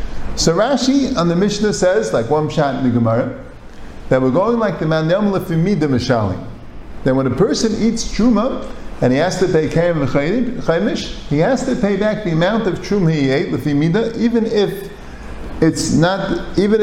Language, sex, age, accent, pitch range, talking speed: English, male, 50-69, American, 130-195 Hz, 185 wpm